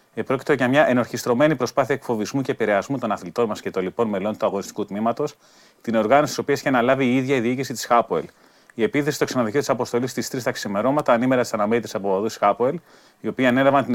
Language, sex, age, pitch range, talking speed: Greek, male, 30-49, 115-145 Hz, 210 wpm